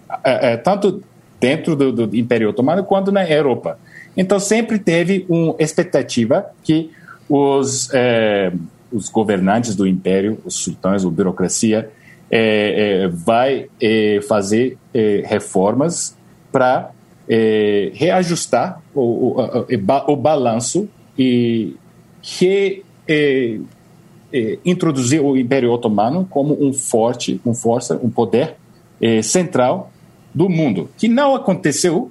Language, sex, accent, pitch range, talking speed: Portuguese, male, Brazilian, 115-160 Hz, 115 wpm